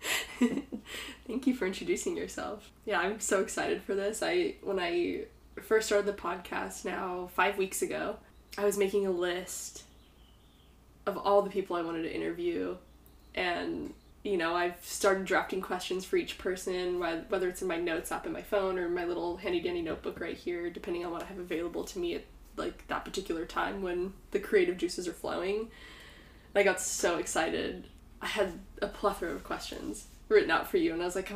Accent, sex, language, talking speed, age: American, female, English, 195 wpm, 10-29